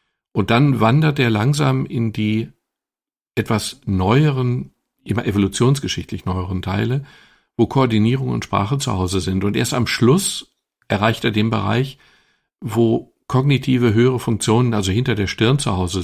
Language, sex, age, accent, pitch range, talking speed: German, male, 50-69, German, 100-130 Hz, 140 wpm